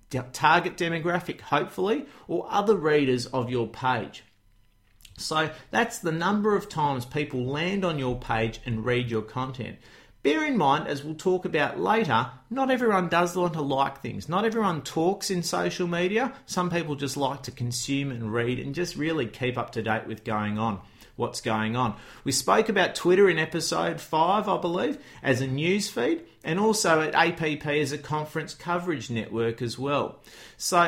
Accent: Australian